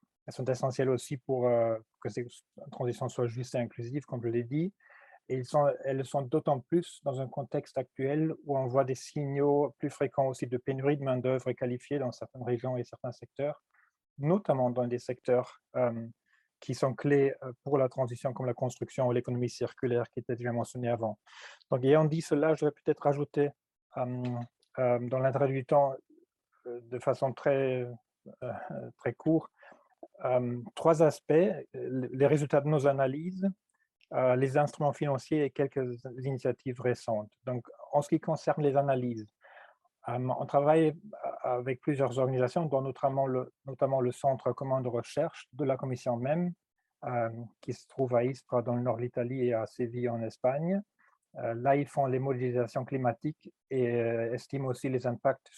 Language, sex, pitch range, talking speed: French, male, 125-145 Hz, 170 wpm